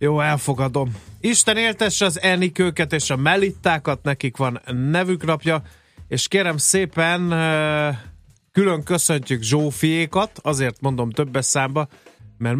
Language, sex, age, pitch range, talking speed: Hungarian, male, 30-49, 115-145 Hz, 115 wpm